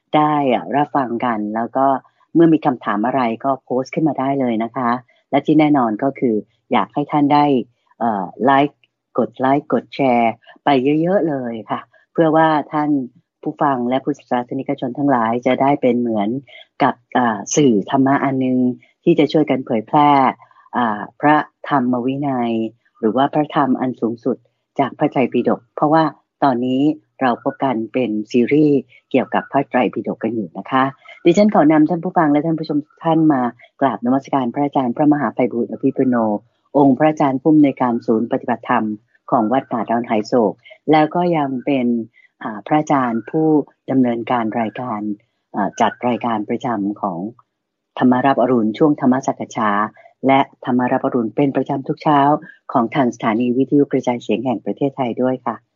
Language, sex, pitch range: English, female, 120-145 Hz